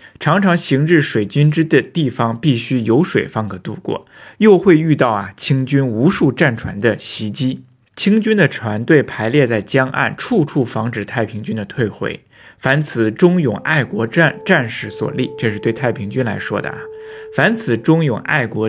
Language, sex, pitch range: Chinese, male, 110-155 Hz